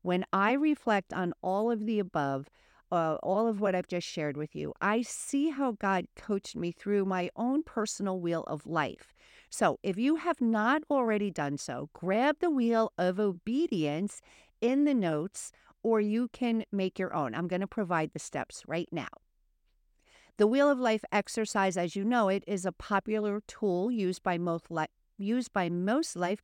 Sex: female